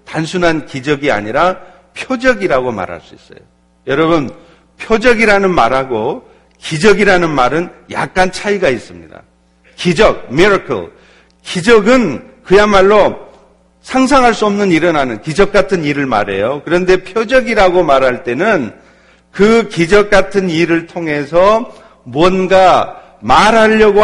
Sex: male